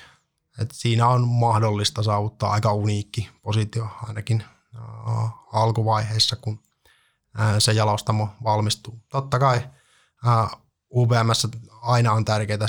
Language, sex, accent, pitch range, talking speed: Finnish, male, native, 110-120 Hz, 95 wpm